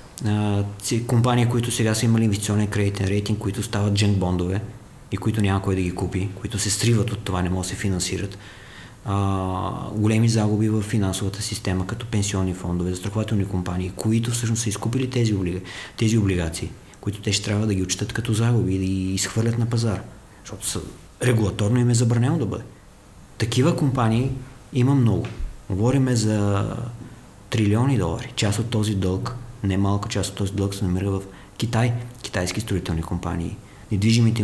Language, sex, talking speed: English, male, 160 wpm